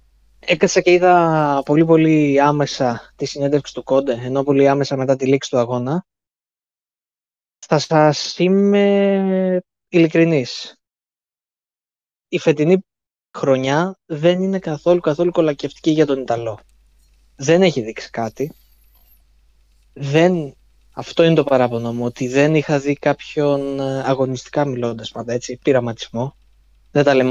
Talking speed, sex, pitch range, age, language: 120 wpm, male, 125-160 Hz, 20-39, Greek